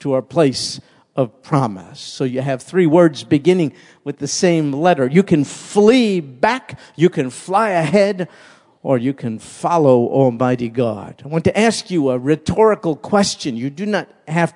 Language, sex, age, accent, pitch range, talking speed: English, male, 50-69, American, 135-195 Hz, 170 wpm